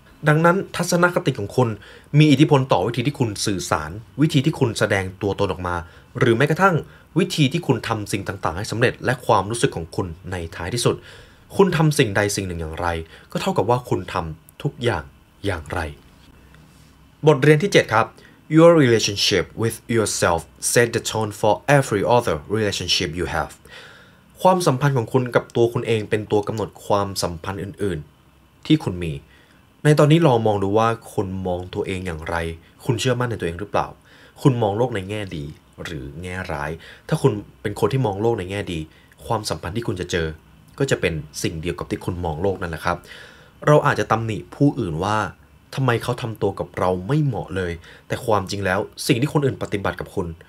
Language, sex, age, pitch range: Thai, male, 20-39, 90-125 Hz